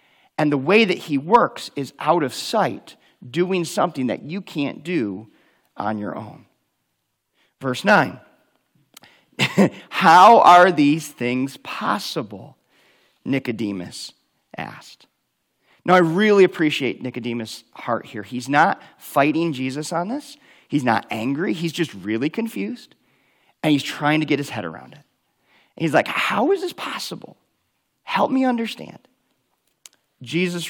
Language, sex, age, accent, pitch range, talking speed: English, male, 40-59, American, 130-175 Hz, 130 wpm